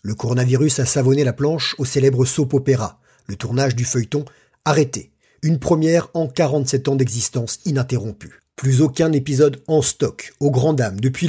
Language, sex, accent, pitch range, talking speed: French, male, French, 125-155 Hz, 165 wpm